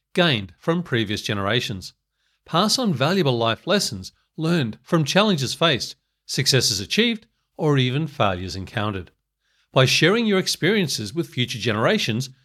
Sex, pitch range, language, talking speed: male, 120-180 Hz, English, 125 wpm